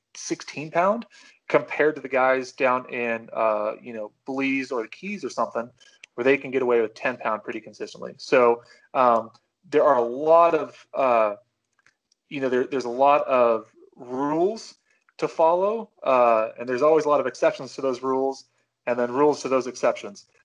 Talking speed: 180 wpm